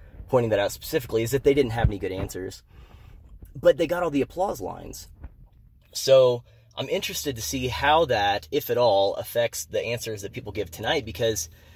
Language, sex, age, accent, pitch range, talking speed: English, male, 30-49, American, 90-115 Hz, 190 wpm